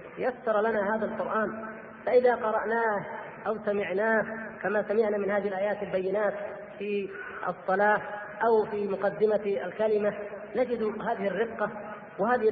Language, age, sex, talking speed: Arabic, 30-49, female, 115 wpm